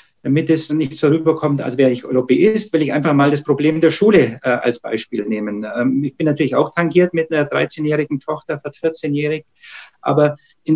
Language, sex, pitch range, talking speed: German, male, 145-175 Hz, 195 wpm